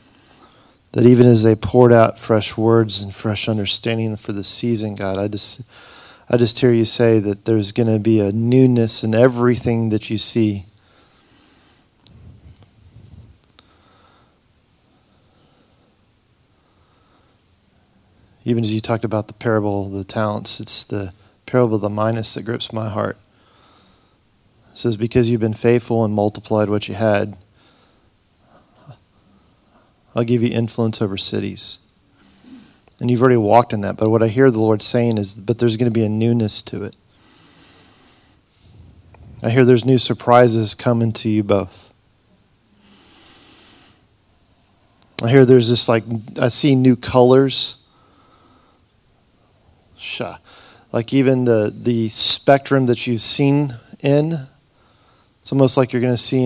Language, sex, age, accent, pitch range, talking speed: English, male, 40-59, American, 105-120 Hz, 135 wpm